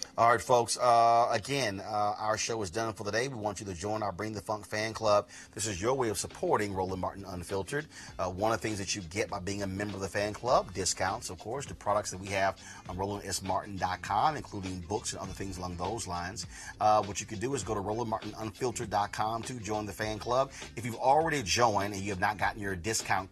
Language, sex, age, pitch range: English, male, 30-49, 95-110 Hz